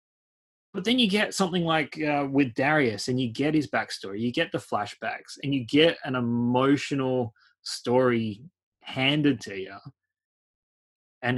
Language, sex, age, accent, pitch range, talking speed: English, male, 20-39, Australian, 115-145 Hz, 150 wpm